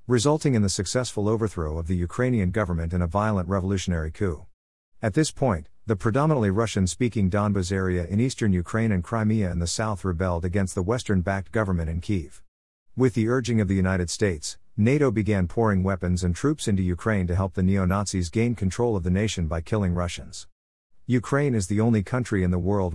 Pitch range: 90-110 Hz